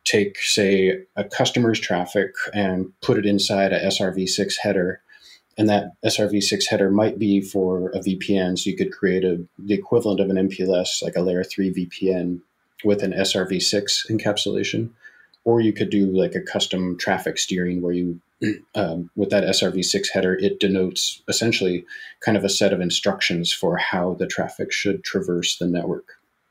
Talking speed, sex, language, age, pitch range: 165 wpm, male, English, 30-49, 90-100 Hz